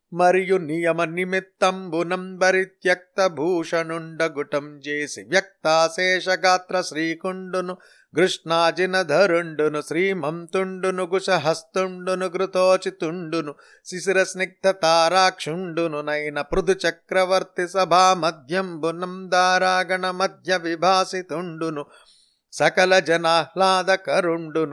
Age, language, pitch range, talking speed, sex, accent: 30-49, Telugu, 160-185 Hz, 50 wpm, male, native